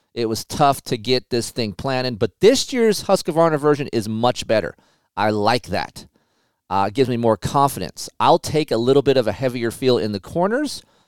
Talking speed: 200 wpm